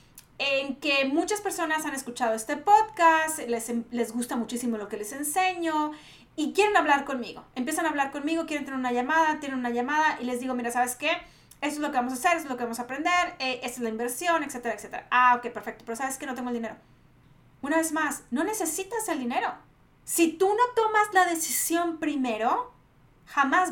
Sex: female